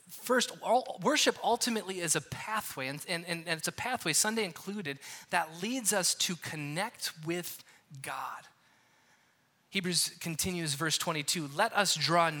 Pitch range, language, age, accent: 155-200 Hz, English, 20-39, American